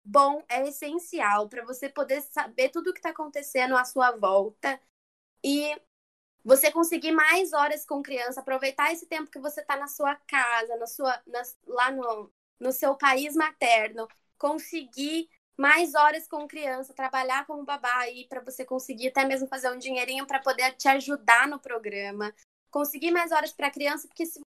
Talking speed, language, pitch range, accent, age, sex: 175 wpm, Portuguese, 255-310 Hz, Brazilian, 20-39, female